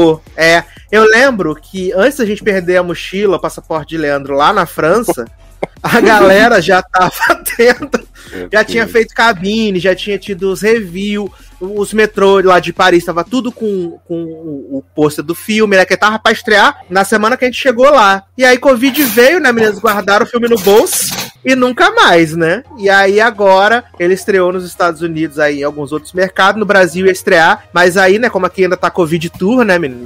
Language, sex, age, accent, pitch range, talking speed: Portuguese, male, 30-49, Brazilian, 160-225 Hz, 200 wpm